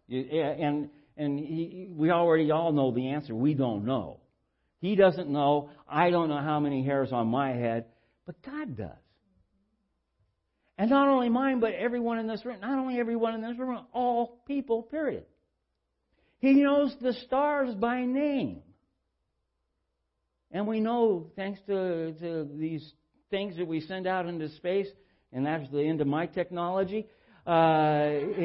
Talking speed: 155 wpm